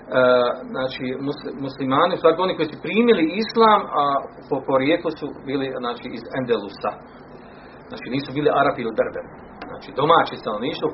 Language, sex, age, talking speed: Croatian, male, 40-59, 150 wpm